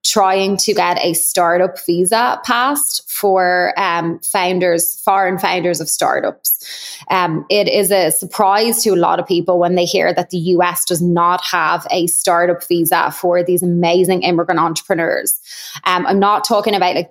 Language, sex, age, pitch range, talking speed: English, female, 20-39, 180-200 Hz, 165 wpm